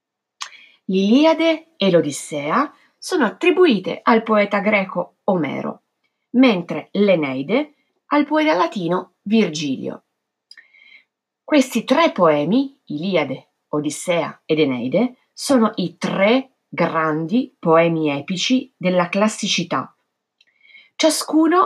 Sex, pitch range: female, 175-270 Hz